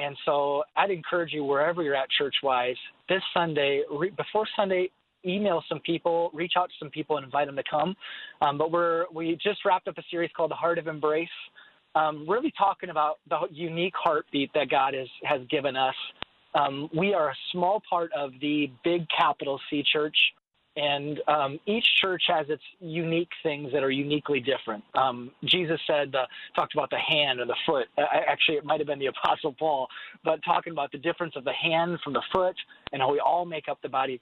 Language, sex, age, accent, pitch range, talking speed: English, male, 30-49, American, 140-170 Hz, 205 wpm